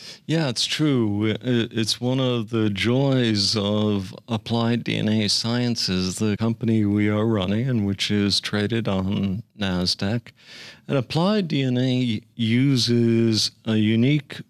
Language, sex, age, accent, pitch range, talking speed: English, male, 50-69, American, 105-125 Hz, 120 wpm